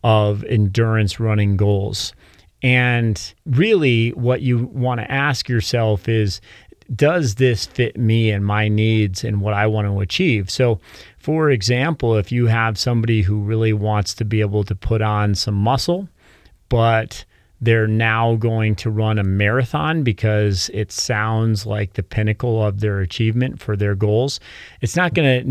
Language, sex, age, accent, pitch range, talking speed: English, male, 30-49, American, 105-120 Hz, 160 wpm